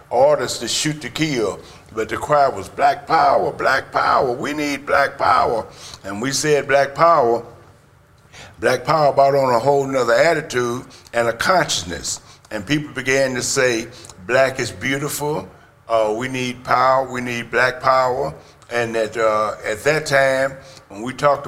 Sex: male